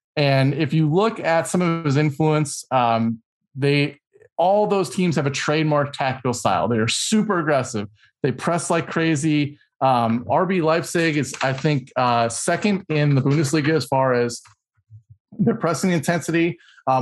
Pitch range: 130-160 Hz